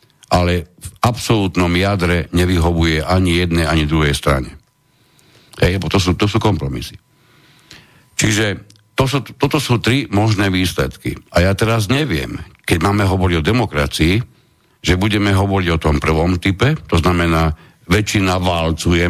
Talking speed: 140 wpm